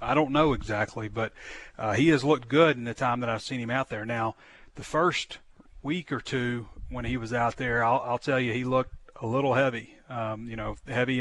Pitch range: 115-135 Hz